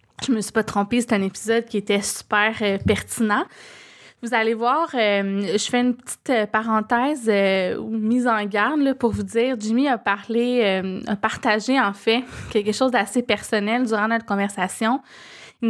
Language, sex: French, female